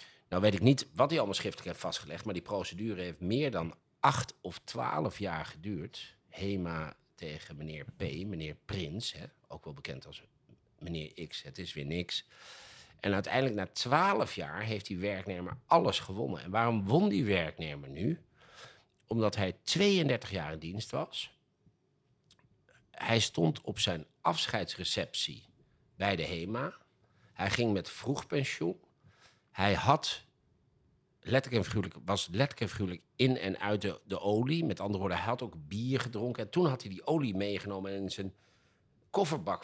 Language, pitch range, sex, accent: Dutch, 95-125 Hz, male, Dutch